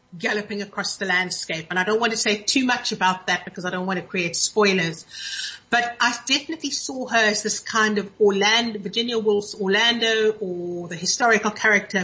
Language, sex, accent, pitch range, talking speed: English, female, British, 200-250 Hz, 190 wpm